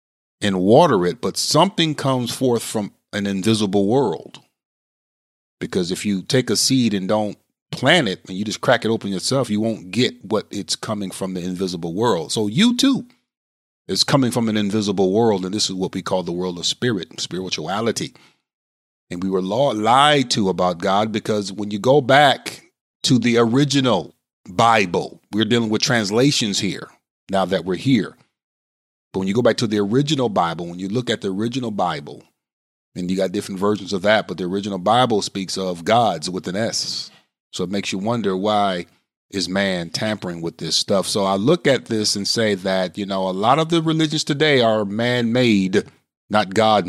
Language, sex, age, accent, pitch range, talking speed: English, male, 40-59, American, 95-120 Hz, 190 wpm